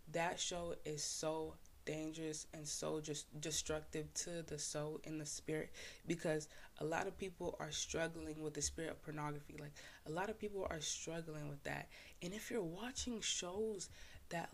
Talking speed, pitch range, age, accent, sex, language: 175 wpm, 150-180 Hz, 20-39, American, female, English